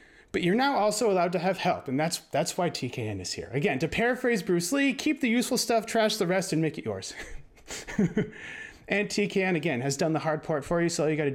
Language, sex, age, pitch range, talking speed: English, male, 30-49, 170-255 Hz, 240 wpm